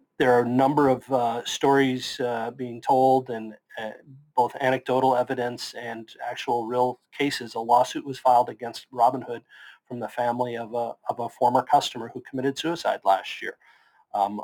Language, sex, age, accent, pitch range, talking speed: English, male, 40-59, American, 110-130 Hz, 170 wpm